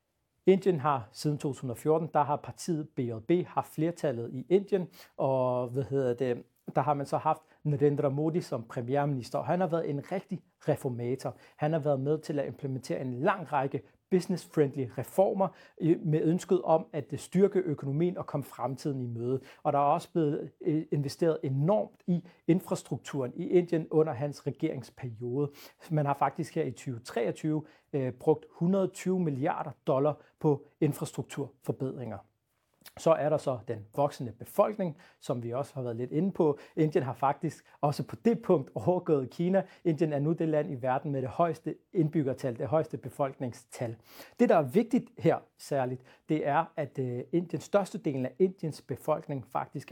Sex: male